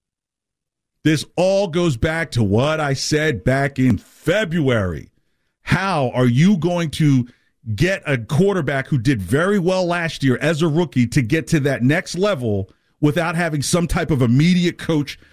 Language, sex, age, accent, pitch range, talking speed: English, male, 40-59, American, 120-175 Hz, 160 wpm